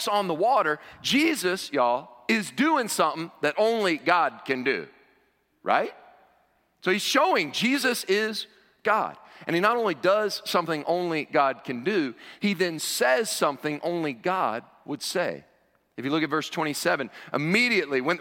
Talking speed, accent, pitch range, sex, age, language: 150 wpm, American, 120-175 Hz, male, 40-59, English